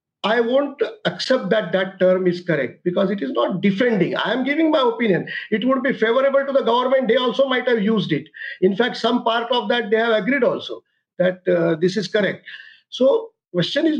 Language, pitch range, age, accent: English, 195-250 Hz, 50-69, Indian